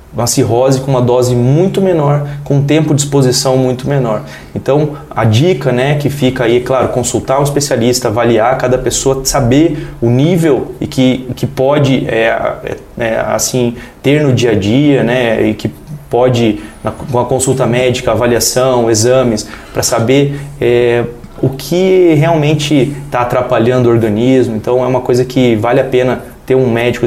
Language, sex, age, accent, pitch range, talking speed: Portuguese, male, 20-39, Brazilian, 120-140 Hz, 170 wpm